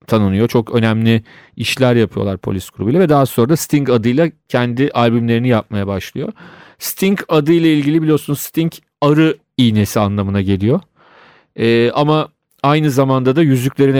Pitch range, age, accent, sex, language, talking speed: 115-140 Hz, 40-59, native, male, Turkish, 135 wpm